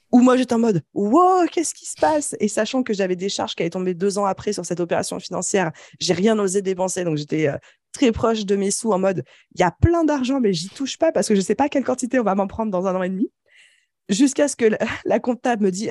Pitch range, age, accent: 175-235 Hz, 20-39, French